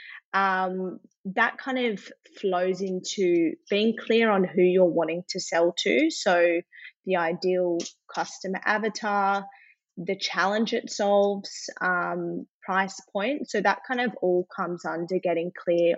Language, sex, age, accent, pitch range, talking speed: English, female, 20-39, Australian, 185-230 Hz, 135 wpm